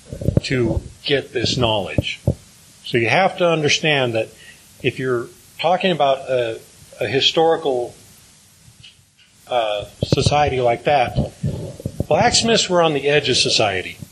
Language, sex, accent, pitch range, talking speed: English, male, American, 120-145 Hz, 120 wpm